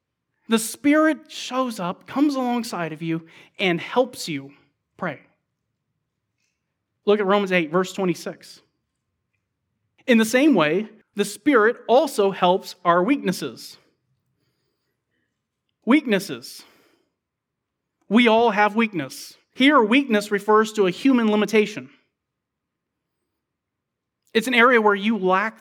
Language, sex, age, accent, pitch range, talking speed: English, male, 30-49, American, 185-235 Hz, 110 wpm